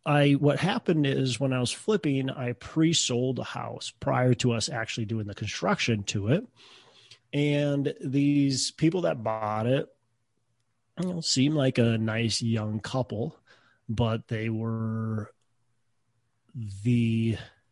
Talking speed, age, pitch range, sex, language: 130 wpm, 30-49, 110-130 Hz, male, English